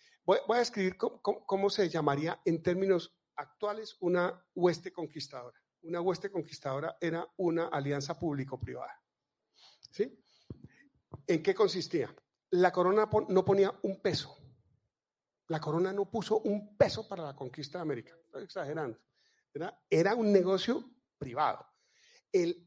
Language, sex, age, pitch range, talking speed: Spanish, male, 50-69, 145-195 Hz, 130 wpm